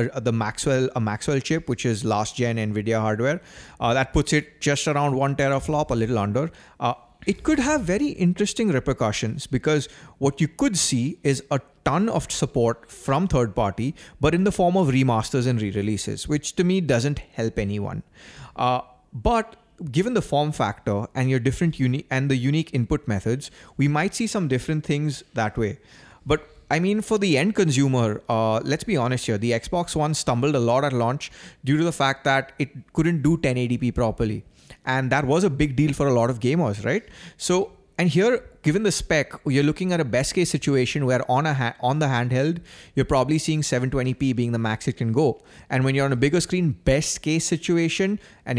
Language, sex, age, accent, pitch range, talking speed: English, male, 30-49, Indian, 125-155 Hz, 200 wpm